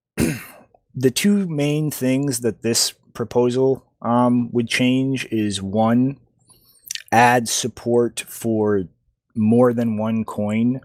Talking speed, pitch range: 105 wpm, 100-120 Hz